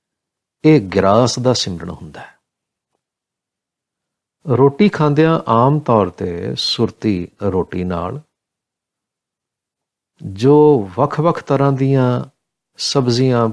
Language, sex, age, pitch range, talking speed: Punjabi, male, 50-69, 105-150 Hz, 85 wpm